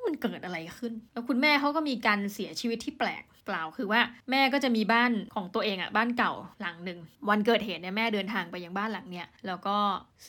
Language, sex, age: Thai, female, 20-39